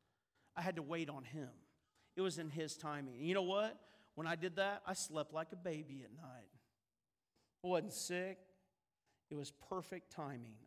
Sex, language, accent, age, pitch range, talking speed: male, English, American, 50-69, 130-175 Hz, 180 wpm